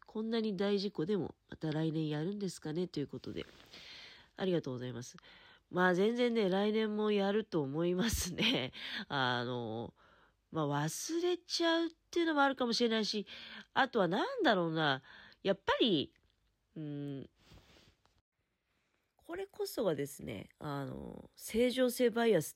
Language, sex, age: Japanese, female, 40-59